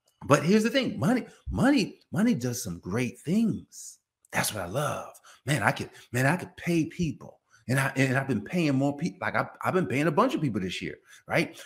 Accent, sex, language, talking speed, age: American, male, English, 230 wpm, 40-59